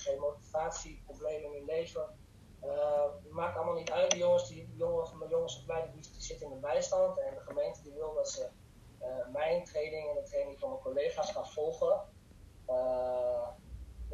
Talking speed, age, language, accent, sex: 170 wpm, 20-39, Dutch, Dutch, male